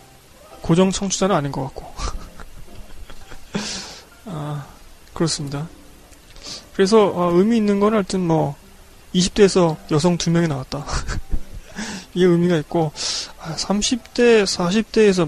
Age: 20-39